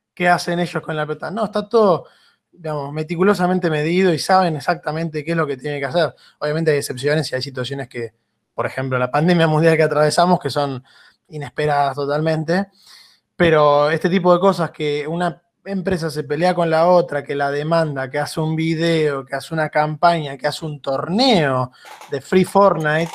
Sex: male